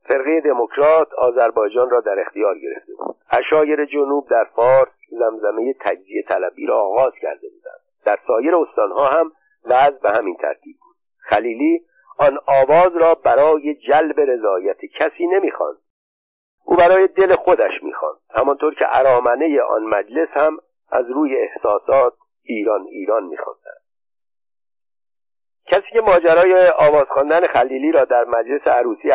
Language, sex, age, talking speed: Persian, male, 50-69, 130 wpm